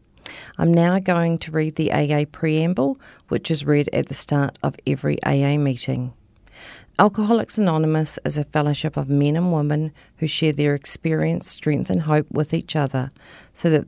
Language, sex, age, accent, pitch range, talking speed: English, female, 40-59, Australian, 145-165 Hz, 170 wpm